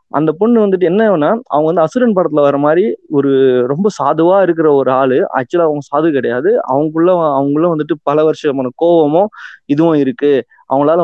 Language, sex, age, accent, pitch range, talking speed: Tamil, male, 20-39, native, 145-185 Hz, 160 wpm